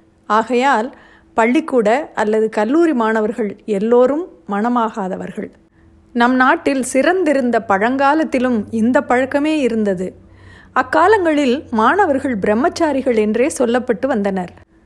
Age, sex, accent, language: 30-49, female, native, Tamil